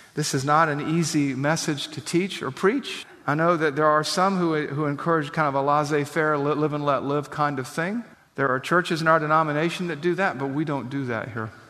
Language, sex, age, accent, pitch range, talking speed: English, male, 50-69, American, 130-160 Hz, 230 wpm